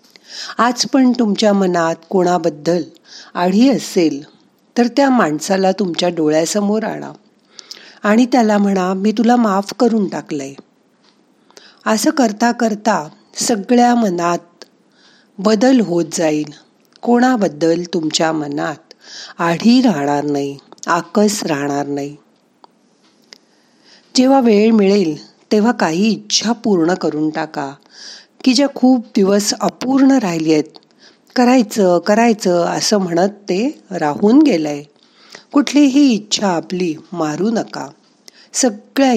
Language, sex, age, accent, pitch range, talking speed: Marathi, female, 40-59, native, 170-240 Hz, 55 wpm